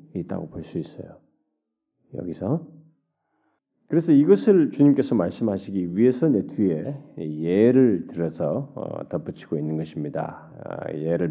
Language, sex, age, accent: Korean, male, 40-59, native